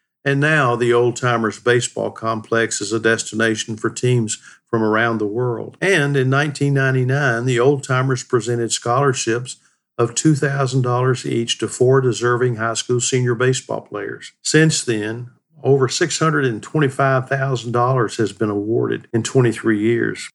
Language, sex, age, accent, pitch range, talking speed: English, male, 50-69, American, 115-130 Hz, 135 wpm